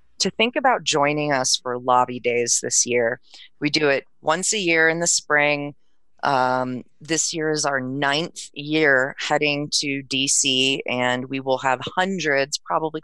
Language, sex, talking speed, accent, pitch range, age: English, female, 160 wpm, American, 130-155 Hz, 30-49